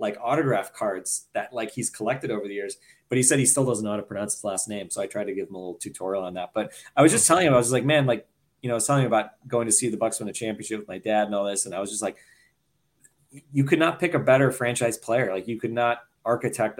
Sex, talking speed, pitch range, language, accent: male, 305 wpm, 110-130 Hz, English, American